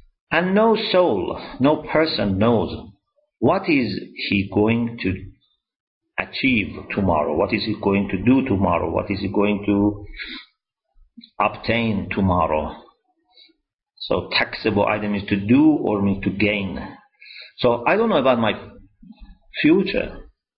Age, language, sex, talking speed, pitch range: 50-69, English, male, 130 wpm, 100-130 Hz